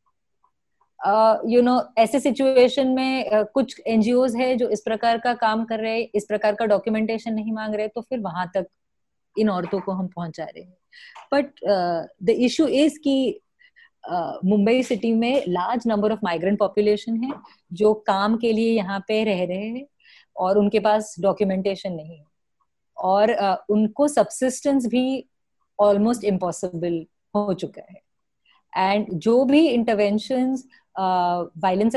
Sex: female